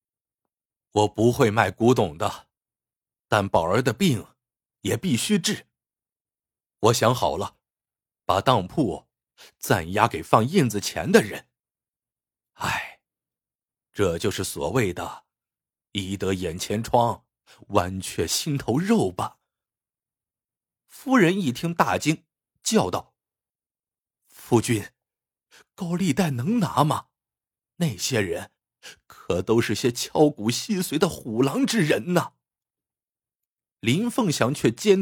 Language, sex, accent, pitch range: Chinese, male, native, 110-180 Hz